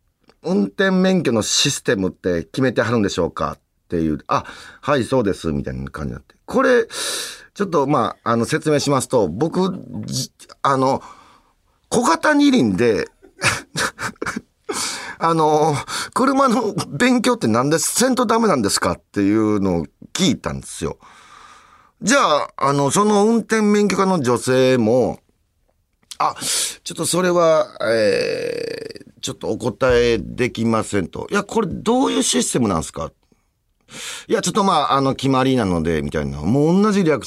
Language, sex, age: Japanese, male, 40-59